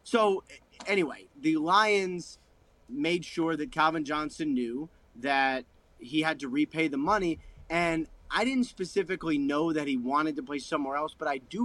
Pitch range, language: 145-185 Hz, English